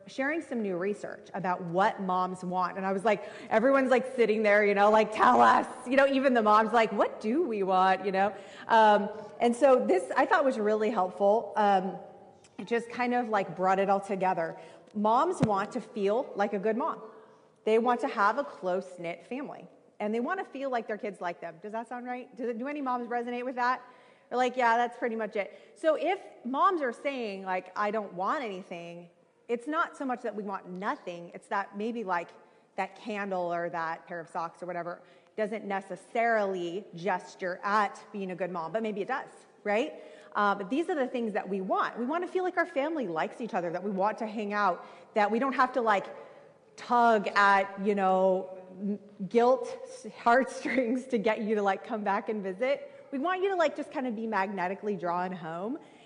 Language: English